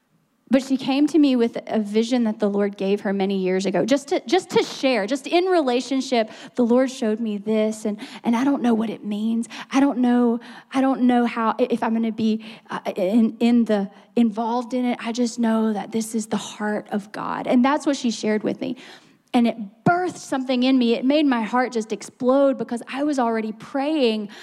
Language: English